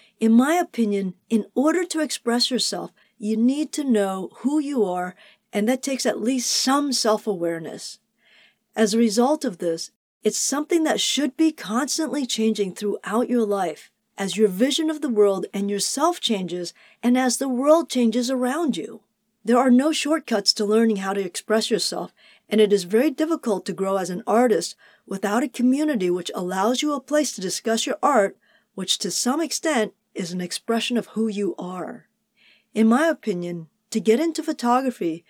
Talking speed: 175 wpm